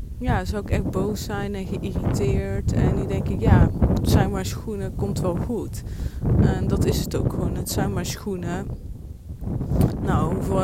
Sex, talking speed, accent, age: female, 180 wpm, Dutch, 20-39